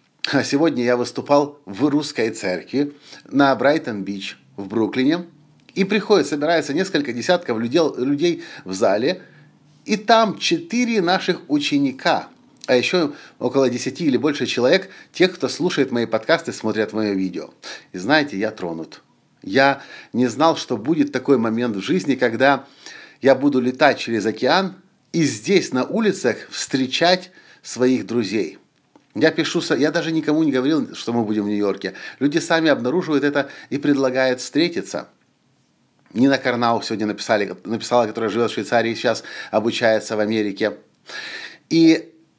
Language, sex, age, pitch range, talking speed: Russian, male, 50-69, 115-160 Hz, 140 wpm